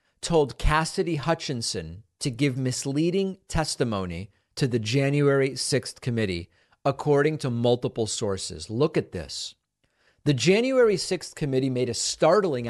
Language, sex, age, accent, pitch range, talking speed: English, male, 40-59, American, 115-155 Hz, 125 wpm